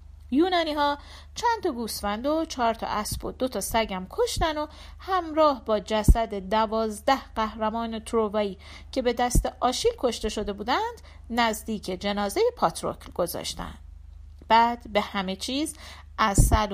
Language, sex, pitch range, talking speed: Persian, female, 180-265 Hz, 135 wpm